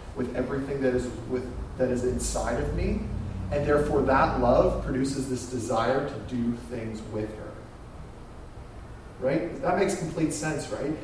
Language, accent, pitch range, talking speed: English, American, 135-190 Hz, 150 wpm